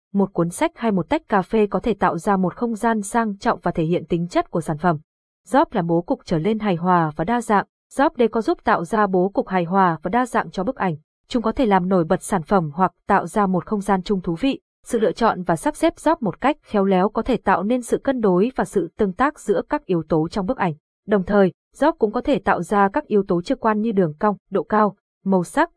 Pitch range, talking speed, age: 180-230 Hz, 275 wpm, 20-39